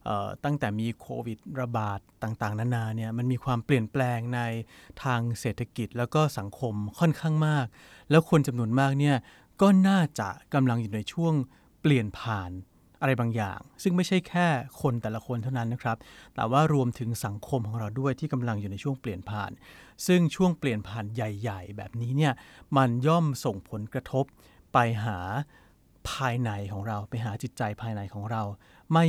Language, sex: Thai, male